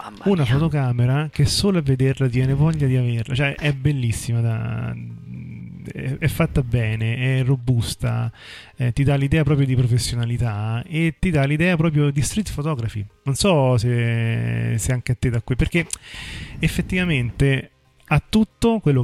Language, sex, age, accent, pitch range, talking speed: Italian, male, 30-49, native, 115-140 Hz, 140 wpm